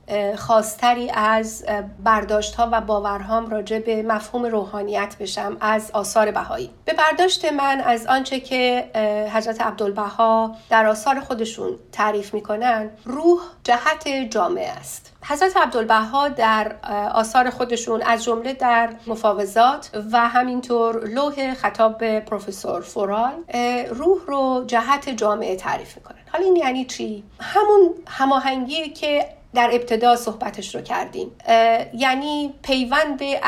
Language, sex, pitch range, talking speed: Persian, female, 220-270 Hz, 120 wpm